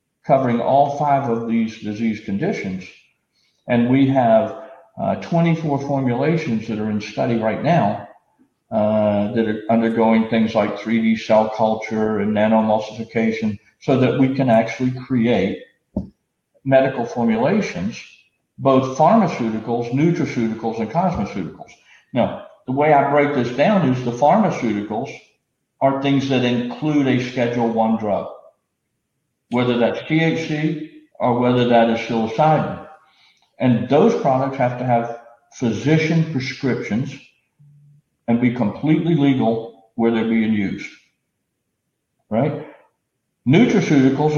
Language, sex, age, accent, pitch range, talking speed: English, male, 50-69, American, 115-145 Hz, 120 wpm